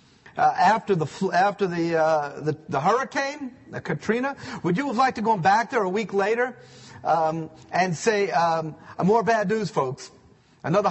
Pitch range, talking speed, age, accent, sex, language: 155-240 Hz, 170 wpm, 40-59, American, male, English